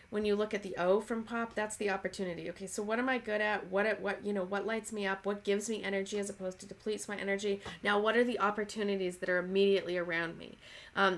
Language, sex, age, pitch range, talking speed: English, female, 30-49, 185-215 Hz, 260 wpm